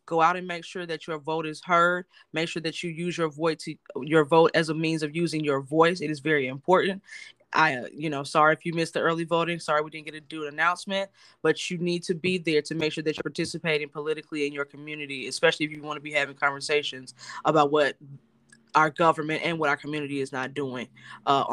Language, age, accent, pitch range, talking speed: English, 10-29, American, 150-180 Hz, 235 wpm